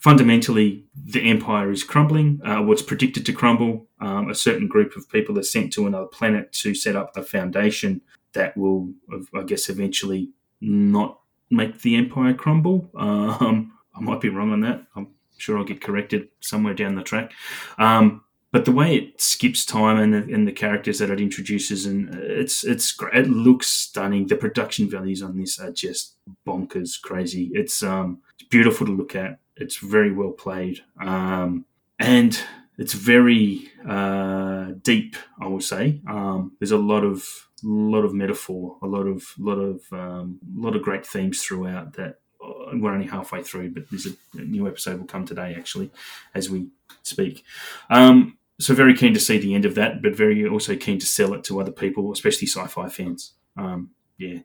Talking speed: 180 wpm